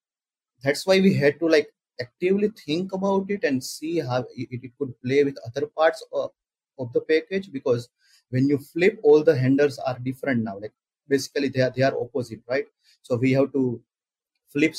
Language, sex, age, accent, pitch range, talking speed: English, male, 30-49, Indian, 125-170 Hz, 190 wpm